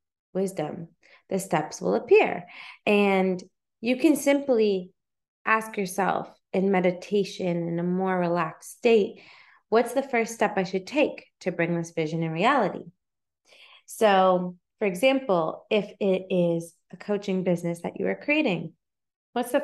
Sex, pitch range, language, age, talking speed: female, 170-210 Hz, English, 20-39, 140 wpm